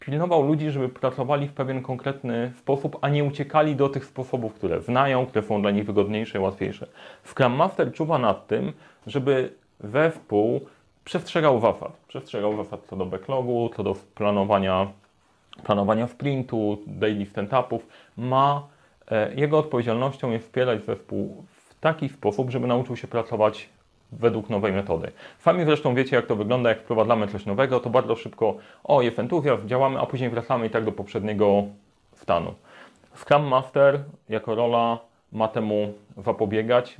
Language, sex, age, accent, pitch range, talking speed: Polish, male, 30-49, native, 105-135 Hz, 150 wpm